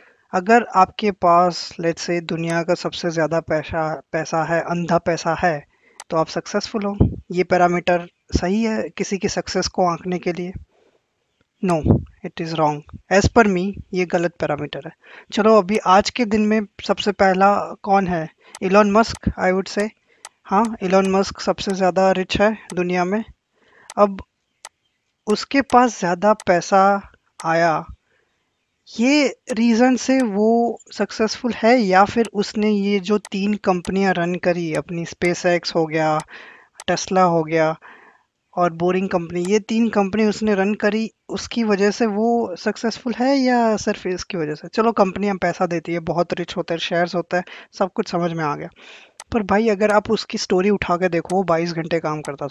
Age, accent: 20-39, native